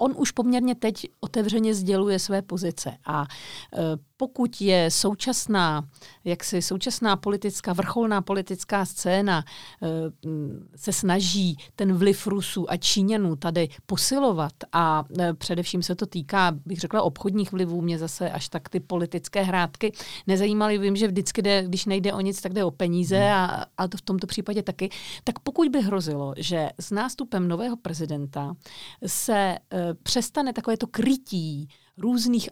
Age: 50-69